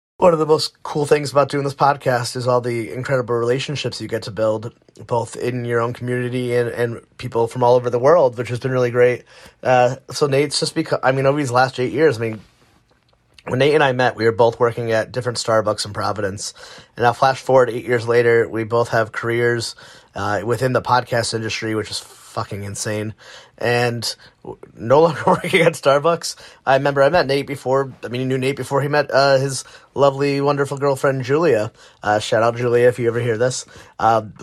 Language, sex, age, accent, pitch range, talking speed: English, male, 30-49, American, 115-135 Hz, 210 wpm